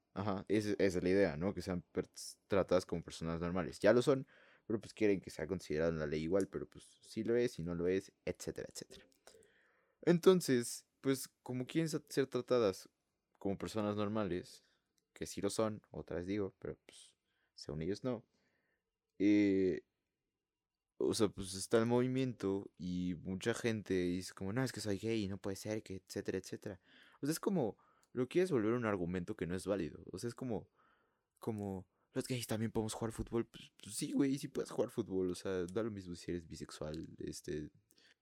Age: 20-39